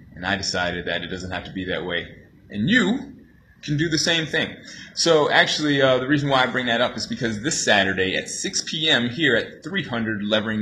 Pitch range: 105-135 Hz